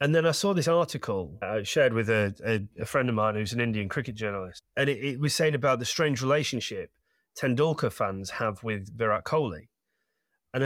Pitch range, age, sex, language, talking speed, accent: 105-135 Hz, 30-49, male, English, 210 wpm, British